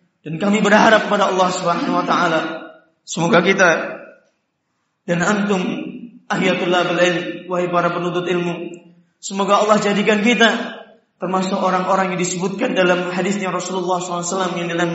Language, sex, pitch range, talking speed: Indonesian, male, 180-215 Hz, 130 wpm